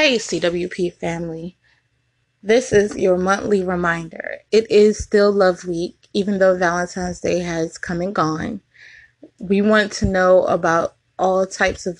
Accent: American